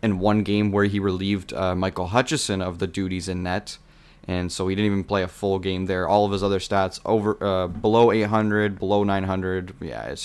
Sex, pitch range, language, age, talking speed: male, 95-110 Hz, English, 20-39, 215 wpm